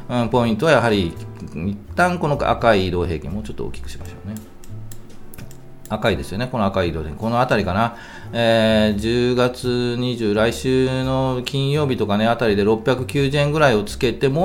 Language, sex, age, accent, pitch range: Japanese, male, 40-59, native, 95-125 Hz